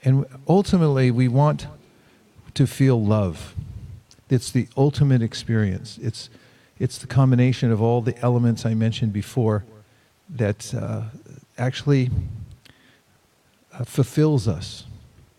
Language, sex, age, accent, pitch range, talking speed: English, male, 50-69, American, 110-130 Hz, 110 wpm